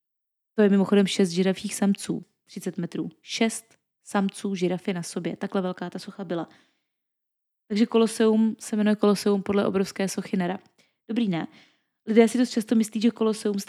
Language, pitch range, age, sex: Czech, 190-220 Hz, 20-39, female